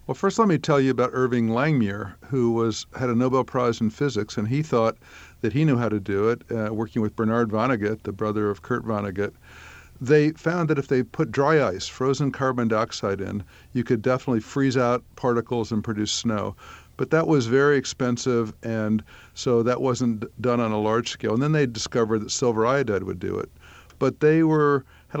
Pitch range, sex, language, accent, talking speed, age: 110-130 Hz, male, English, American, 205 wpm, 50-69